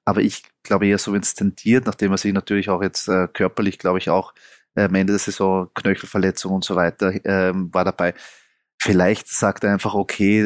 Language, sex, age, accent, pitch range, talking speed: German, male, 20-39, German, 100-120 Hz, 195 wpm